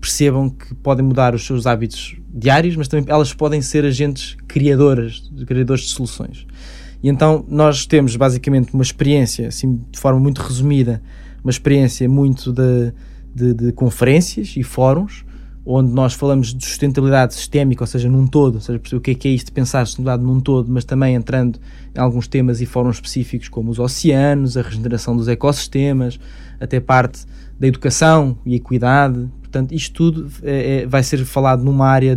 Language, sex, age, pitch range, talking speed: Portuguese, male, 20-39, 125-140 Hz, 170 wpm